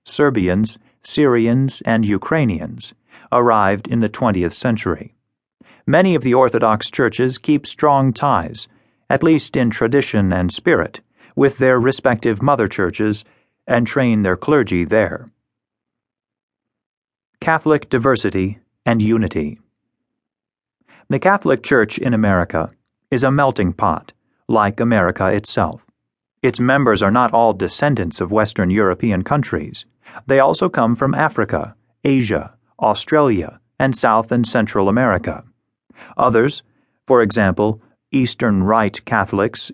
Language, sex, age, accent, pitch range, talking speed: English, male, 40-59, American, 105-135 Hz, 115 wpm